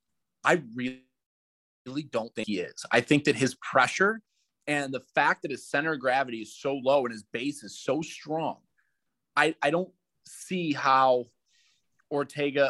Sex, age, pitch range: male, 30-49, 120-155 Hz